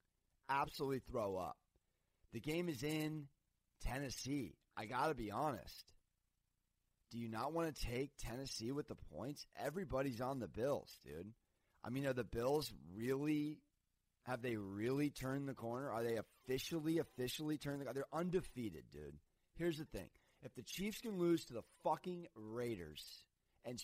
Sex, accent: male, American